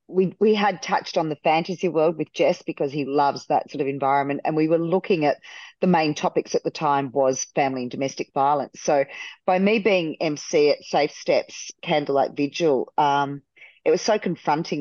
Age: 40-59